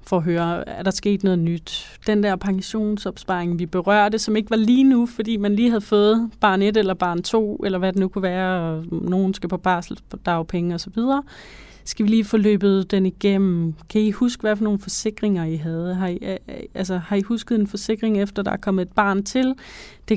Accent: native